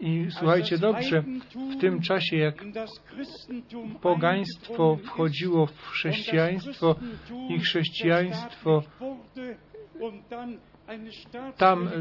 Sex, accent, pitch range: male, native, 160-195 Hz